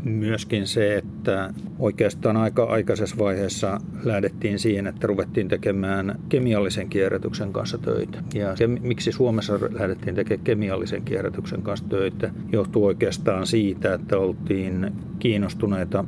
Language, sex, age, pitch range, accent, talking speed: Finnish, male, 50-69, 95-110 Hz, native, 120 wpm